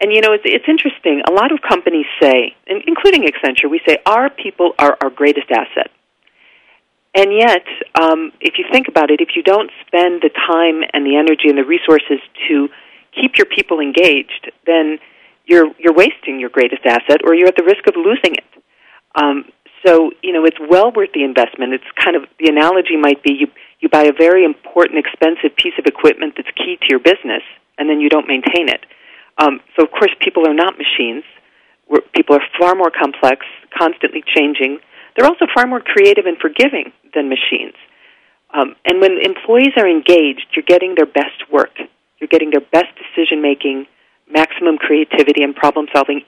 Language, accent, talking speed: English, American, 185 wpm